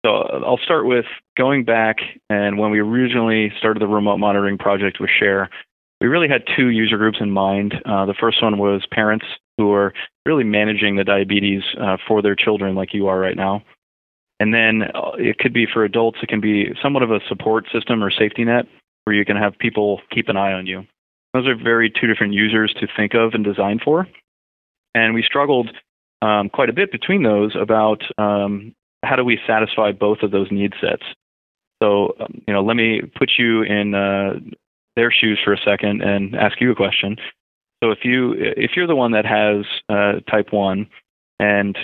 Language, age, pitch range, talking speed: English, 30-49, 100-115 Hz, 200 wpm